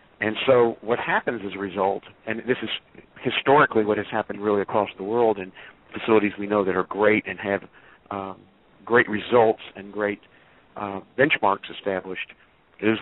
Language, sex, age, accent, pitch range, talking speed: English, male, 60-79, American, 95-110 Hz, 165 wpm